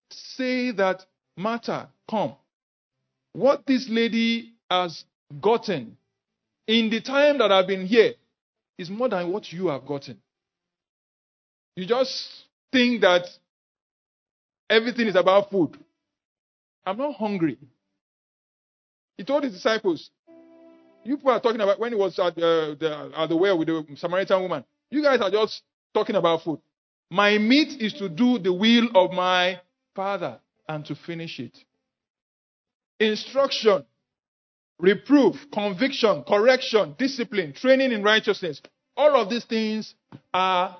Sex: male